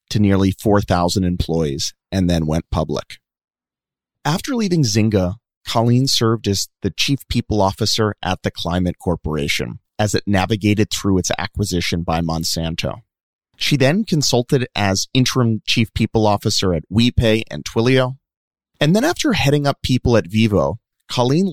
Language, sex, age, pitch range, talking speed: English, male, 30-49, 95-125 Hz, 140 wpm